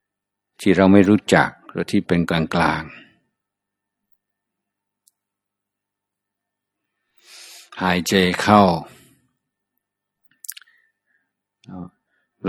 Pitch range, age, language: 85-100 Hz, 60-79, Thai